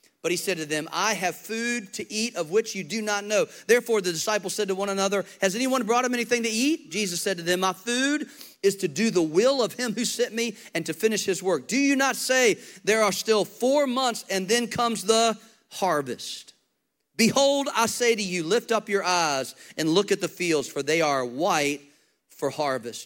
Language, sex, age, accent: English, male, 40-59, American